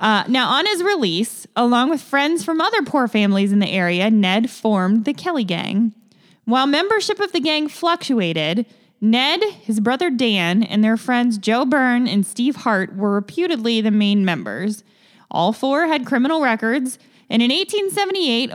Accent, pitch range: American, 205-280 Hz